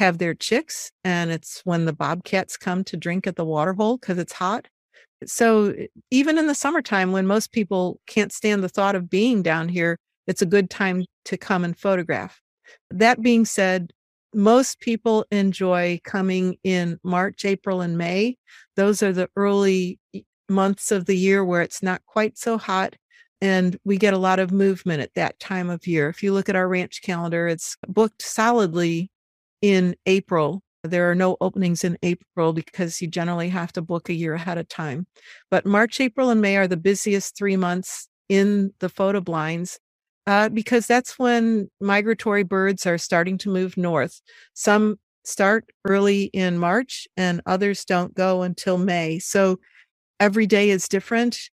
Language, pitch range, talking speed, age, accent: English, 180-210 Hz, 175 wpm, 50-69, American